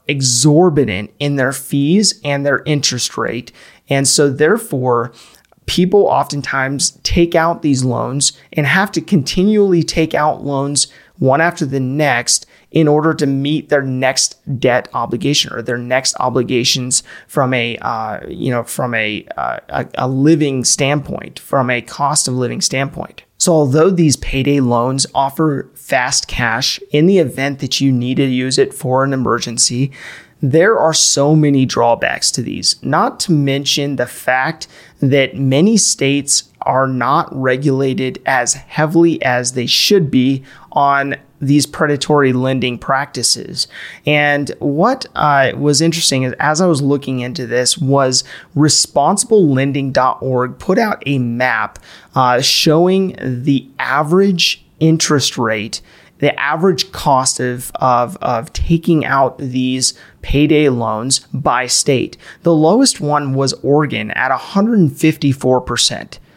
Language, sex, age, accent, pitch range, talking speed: English, male, 30-49, American, 130-155 Hz, 135 wpm